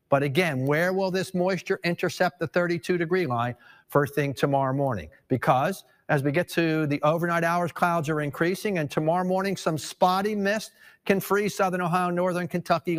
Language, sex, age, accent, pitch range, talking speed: English, male, 50-69, American, 145-185 Hz, 170 wpm